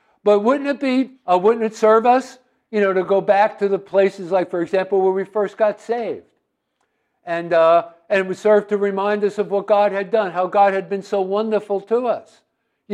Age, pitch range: 60-79, 180-215 Hz